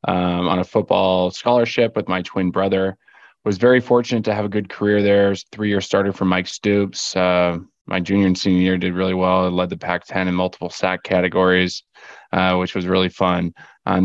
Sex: male